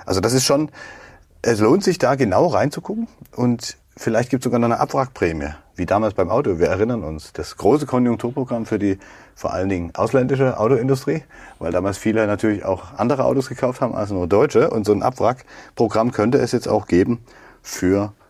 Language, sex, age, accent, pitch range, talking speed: German, male, 40-59, German, 105-130 Hz, 185 wpm